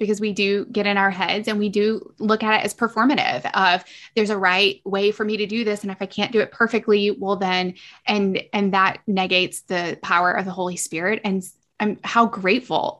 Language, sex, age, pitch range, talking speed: English, female, 20-39, 185-215 Hz, 220 wpm